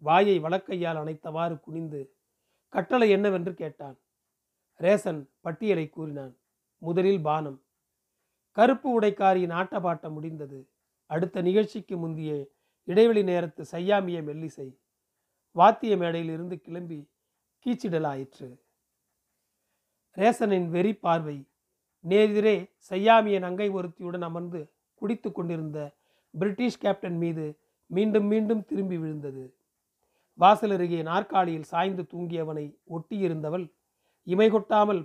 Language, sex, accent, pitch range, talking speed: Tamil, male, native, 155-200 Hz, 90 wpm